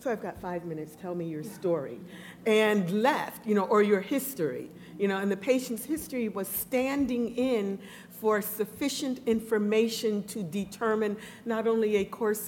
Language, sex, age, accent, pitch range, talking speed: English, female, 50-69, American, 185-220 Hz, 160 wpm